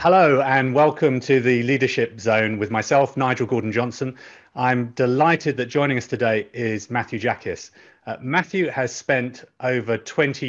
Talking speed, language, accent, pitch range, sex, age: 150 wpm, English, British, 115-145 Hz, male, 30-49